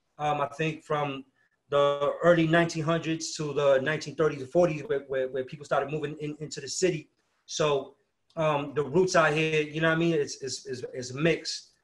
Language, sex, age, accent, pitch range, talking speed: English, male, 30-49, American, 135-155 Hz, 195 wpm